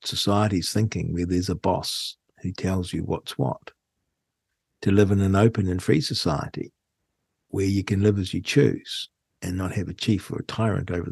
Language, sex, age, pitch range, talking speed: English, male, 60-79, 100-130 Hz, 190 wpm